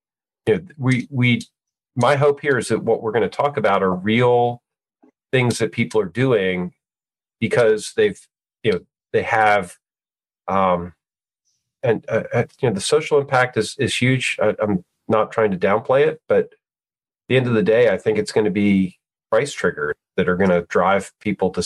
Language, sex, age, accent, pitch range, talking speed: English, male, 40-59, American, 95-140 Hz, 190 wpm